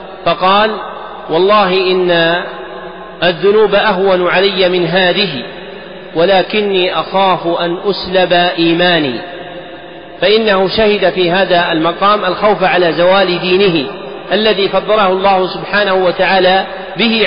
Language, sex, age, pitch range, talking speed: Arabic, male, 40-59, 180-200 Hz, 95 wpm